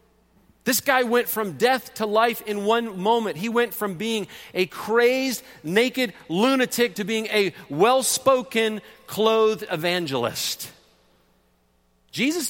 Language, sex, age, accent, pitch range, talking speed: English, male, 40-59, American, 170-225 Hz, 120 wpm